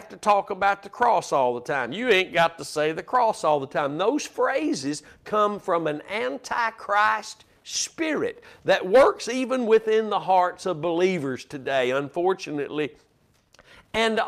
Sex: male